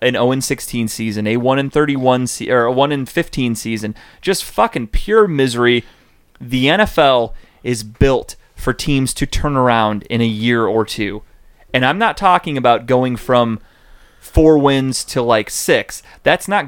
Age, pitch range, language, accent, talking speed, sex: 30-49, 115-155 Hz, English, American, 160 wpm, male